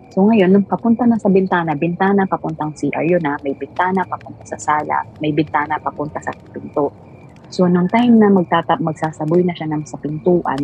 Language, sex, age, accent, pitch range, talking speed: Filipino, female, 30-49, native, 160-190 Hz, 175 wpm